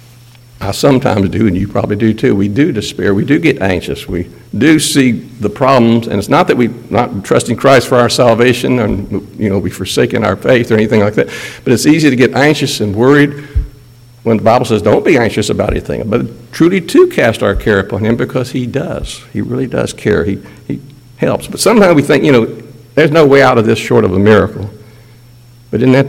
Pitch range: 115-140 Hz